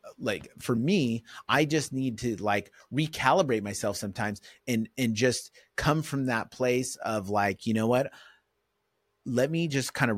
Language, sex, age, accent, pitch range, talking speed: English, male, 30-49, American, 110-135 Hz, 165 wpm